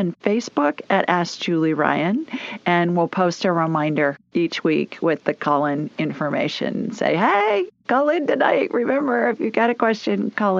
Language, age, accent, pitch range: English, 50-69, American, 165-210 Hz